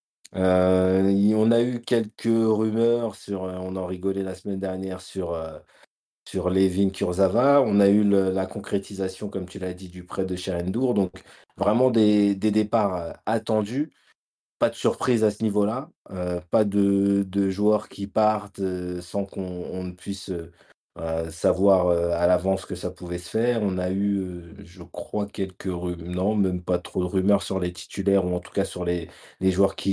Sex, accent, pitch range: male, French, 95-110 Hz